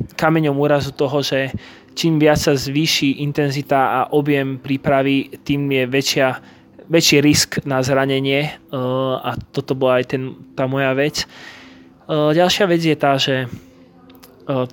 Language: Slovak